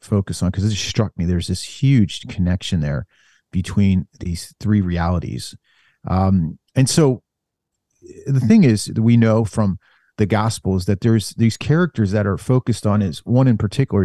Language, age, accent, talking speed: English, 40-59, American, 160 wpm